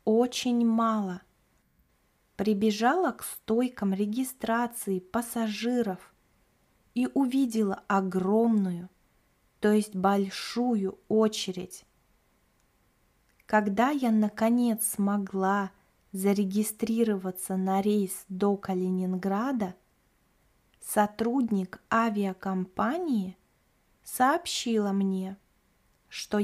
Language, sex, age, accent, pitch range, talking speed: Russian, female, 20-39, native, 190-225 Hz, 65 wpm